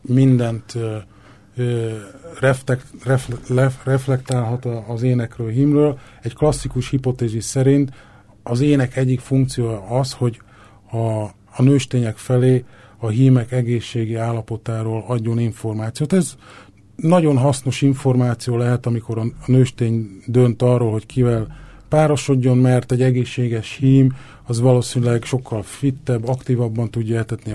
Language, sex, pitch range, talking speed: Hungarian, male, 115-130 Hz, 105 wpm